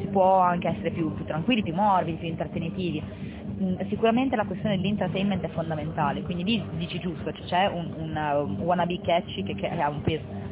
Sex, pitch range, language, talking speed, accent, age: female, 160-195 Hz, Italian, 175 wpm, native, 20-39